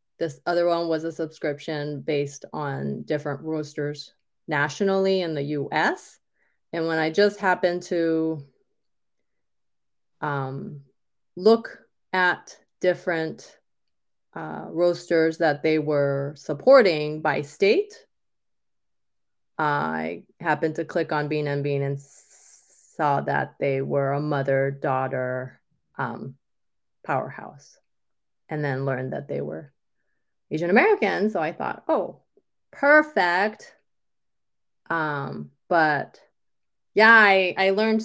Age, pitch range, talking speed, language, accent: 30-49, 145-175 Hz, 105 wpm, English, American